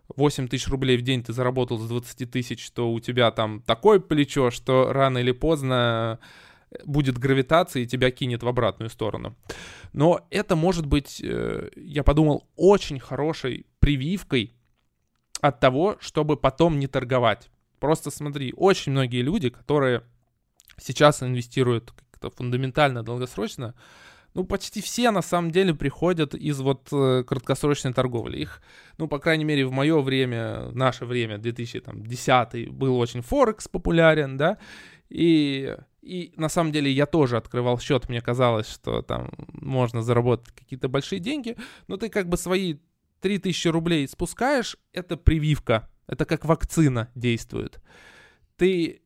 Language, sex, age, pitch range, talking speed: Russian, male, 20-39, 125-160 Hz, 140 wpm